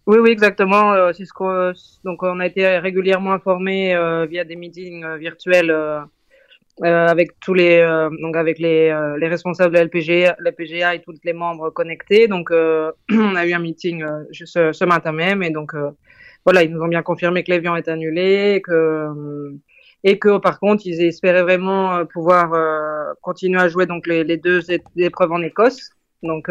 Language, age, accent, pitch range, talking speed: French, 20-39, French, 165-190 Hz, 190 wpm